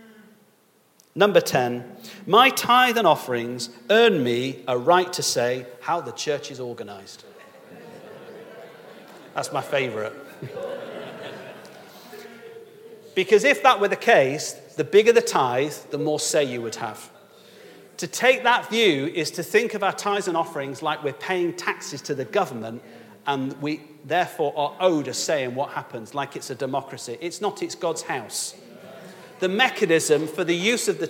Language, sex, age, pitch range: English, male, 40-59, 140-230 Hz